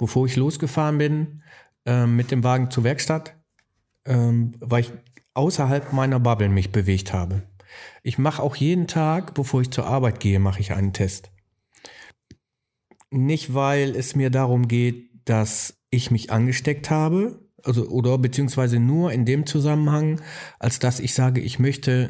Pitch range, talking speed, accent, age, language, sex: 115-140 Hz, 155 wpm, German, 50-69, German, male